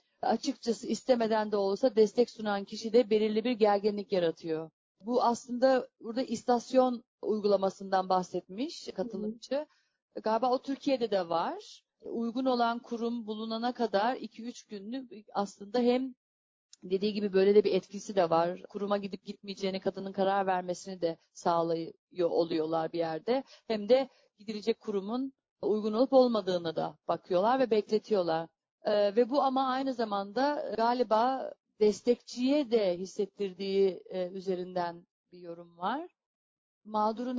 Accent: native